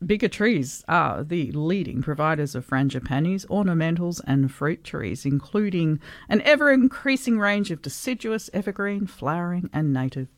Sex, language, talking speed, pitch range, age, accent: female, English, 125 wpm, 140-195 Hz, 50-69, Australian